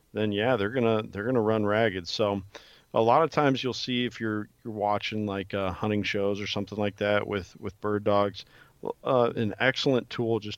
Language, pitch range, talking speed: English, 100-115 Hz, 210 wpm